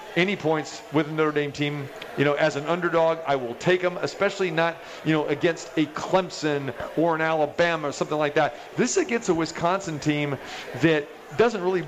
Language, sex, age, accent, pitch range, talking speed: English, male, 40-59, American, 150-180 Hz, 190 wpm